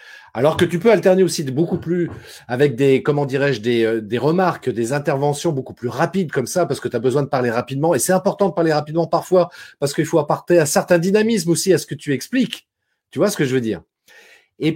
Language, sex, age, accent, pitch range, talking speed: French, male, 40-59, French, 130-180 Hz, 240 wpm